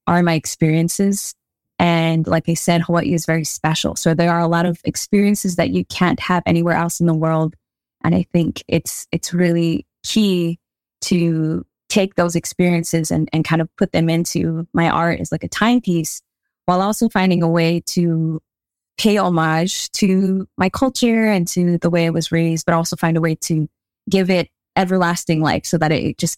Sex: female